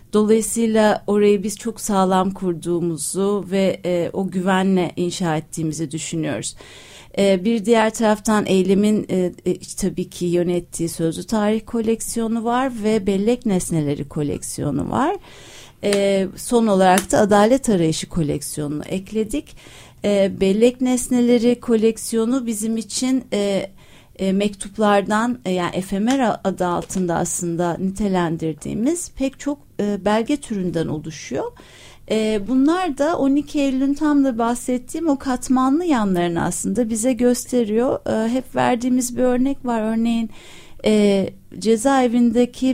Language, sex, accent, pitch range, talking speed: Turkish, female, native, 185-240 Hz, 120 wpm